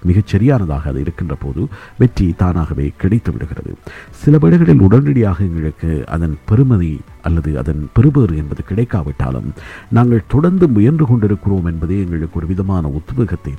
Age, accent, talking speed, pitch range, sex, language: 50-69, native, 125 wpm, 80-110 Hz, male, Tamil